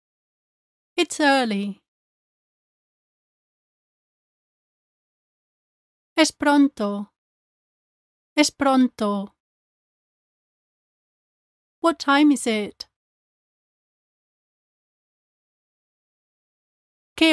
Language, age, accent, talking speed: English, 30-49, American, 40 wpm